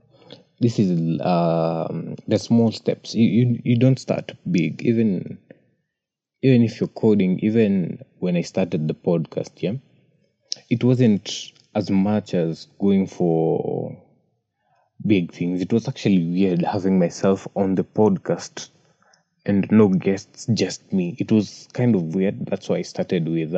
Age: 20-39